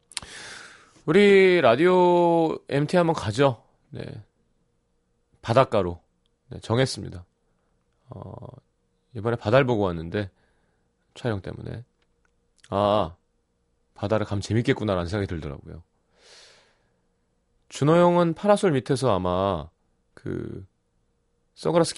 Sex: male